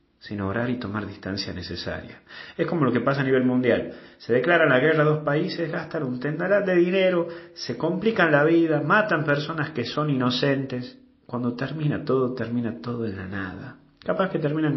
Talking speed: 185 wpm